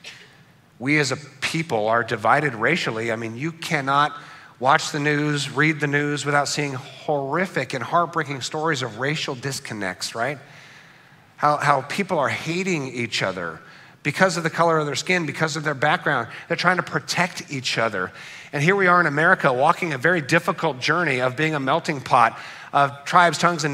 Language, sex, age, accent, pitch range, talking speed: English, male, 50-69, American, 145-175 Hz, 180 wpm